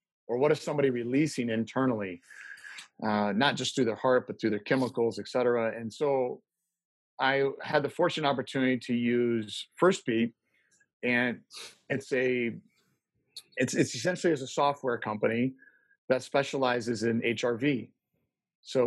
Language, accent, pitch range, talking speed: English, American, 120-145 Hz, 140 wpm